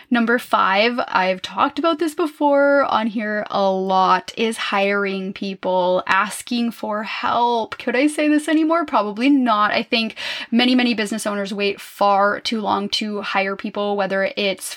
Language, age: English, 10-29